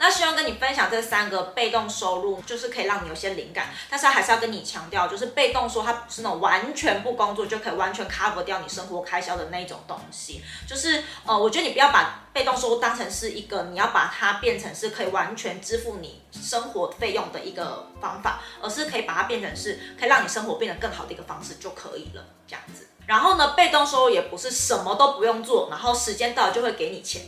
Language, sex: Chinese, female